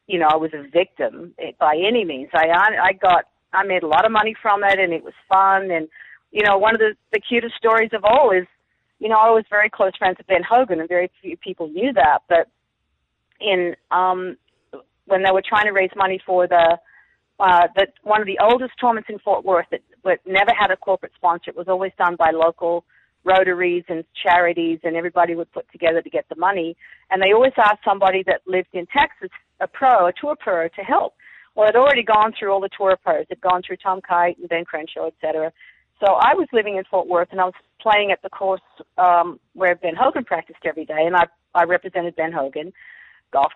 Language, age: English, 40-59